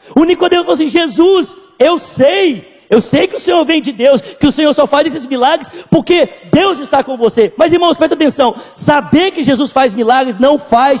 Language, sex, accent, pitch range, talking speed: Portuguese, male, Brazilian, 265-320 Hz, 205 wpm